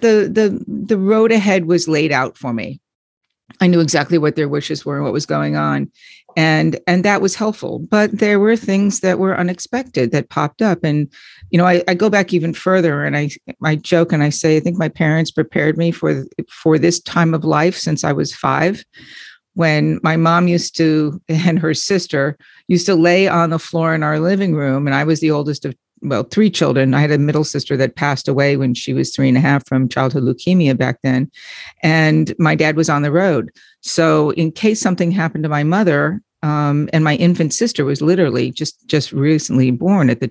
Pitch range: 150-180 Hz